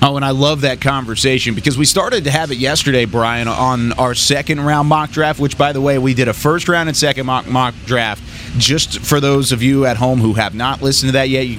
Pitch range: 120-155 Hz